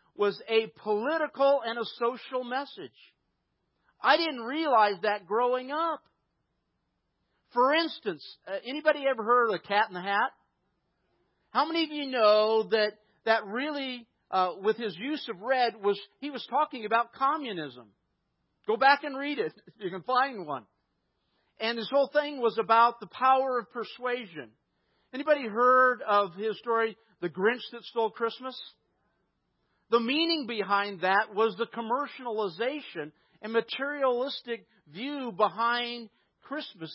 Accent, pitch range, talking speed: American, 215-270 Hz, 140 wpm